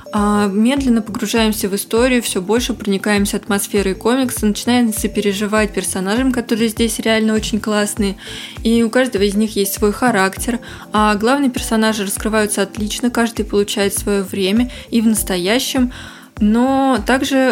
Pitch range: 210-245 Hz